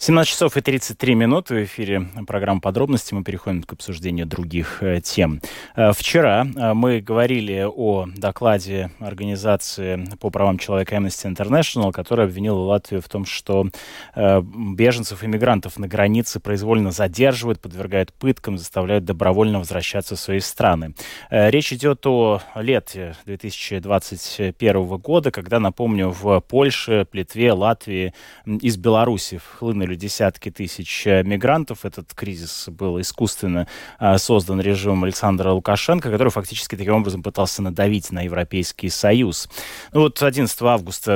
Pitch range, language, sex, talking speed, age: 95-110 Hz, Russian, male, 125 wpm, 20-39